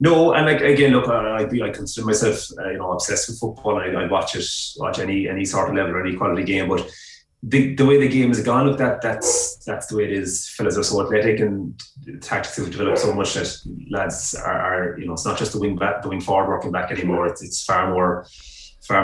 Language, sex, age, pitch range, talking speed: English, male, 30-49, 85-110 Hz, 240 wpm